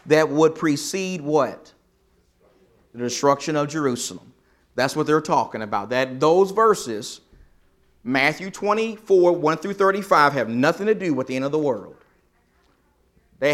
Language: English